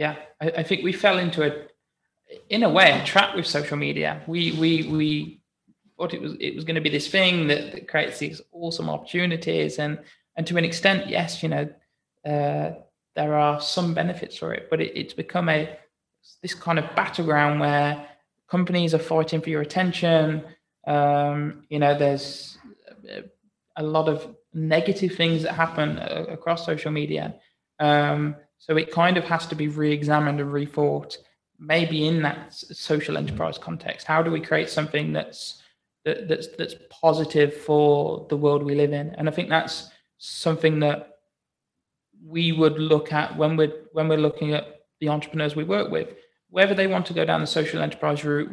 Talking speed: 180 wpm